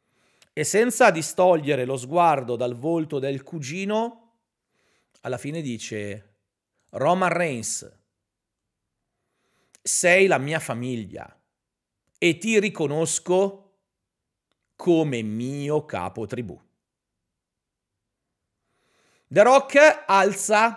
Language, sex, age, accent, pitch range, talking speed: Italian, male, 40-59, native, 140-225 Hz, 80 wpm